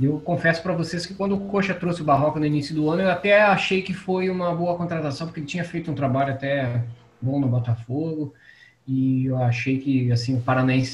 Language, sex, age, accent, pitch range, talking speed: Portuguese, male, 20-39, Brazilian, 125-155 Hz, 215 wpm